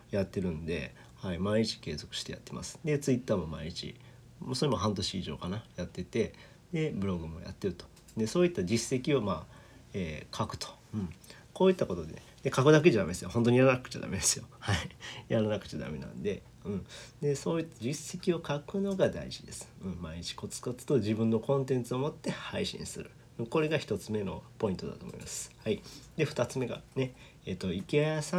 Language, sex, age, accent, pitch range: Japanese, male, 40-59, native, 110-160 Hz